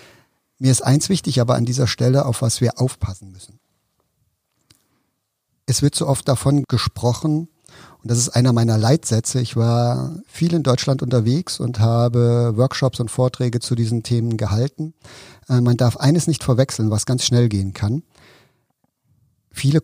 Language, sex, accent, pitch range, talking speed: German, male, German, 110-130 Hz, 155 wpm